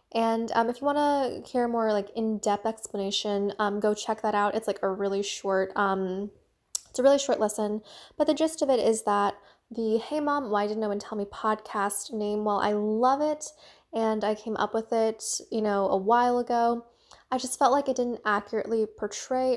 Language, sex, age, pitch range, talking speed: English, female, 10-29, 210-265 Hz, 205 wpm